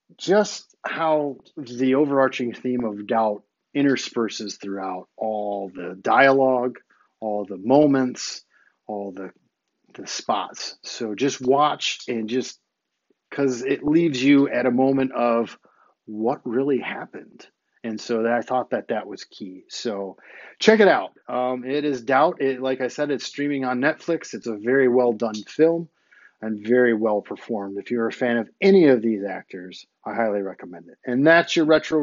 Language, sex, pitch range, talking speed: English, male, 115-145 Hz, 165 wpm